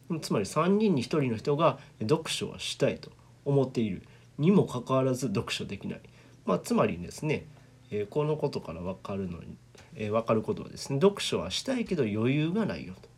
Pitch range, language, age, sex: 110-160 Hz, Japanese, 40-59, male